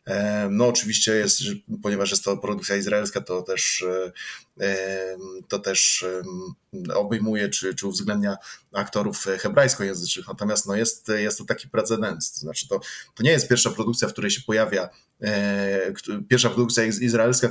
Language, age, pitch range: Polish, 20-39, 100-120 Hz